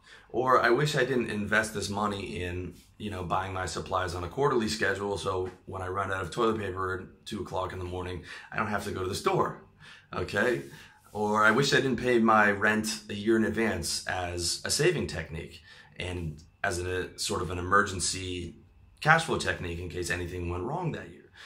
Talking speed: 205 wpm